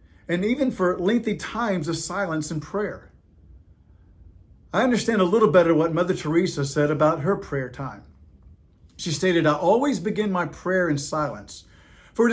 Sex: male